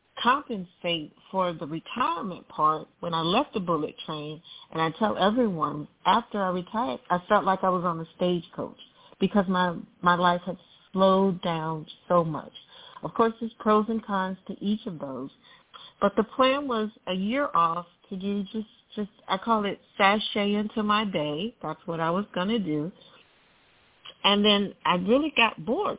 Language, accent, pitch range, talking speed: English, American, 160-205 Hz, 175 wpm